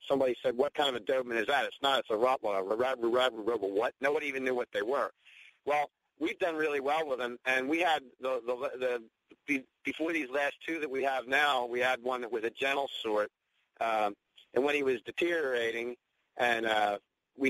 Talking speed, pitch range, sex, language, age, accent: 220 wpm, 120-155 Hz, male, English, 50-69, American